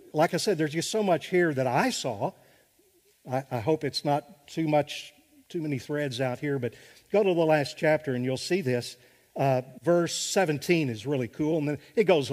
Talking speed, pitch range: 210 wpm, 130-185 Hz